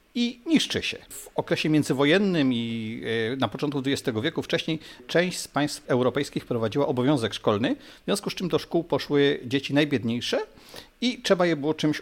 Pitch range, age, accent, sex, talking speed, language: 130-170 Hz, 50-69, native, male, 165 wpm, Polish